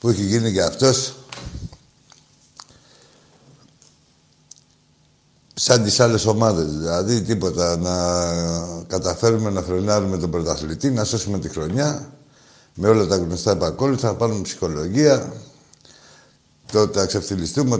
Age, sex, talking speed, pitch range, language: 60-79, male, 105 wpm, 90-125 Hz, Greek